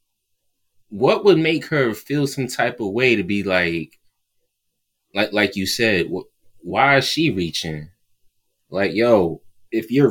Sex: male